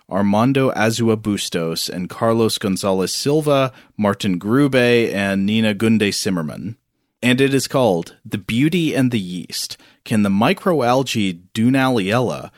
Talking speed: 125 wpm